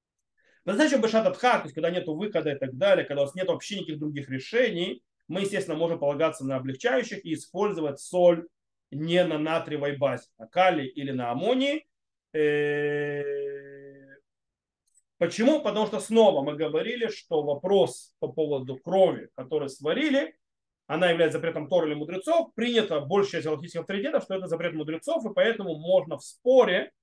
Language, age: Russian, 30-49